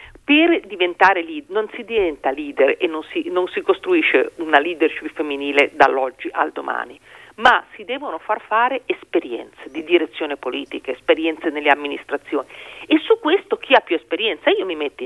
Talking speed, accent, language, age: 165 wpm, native, Italian, 40-59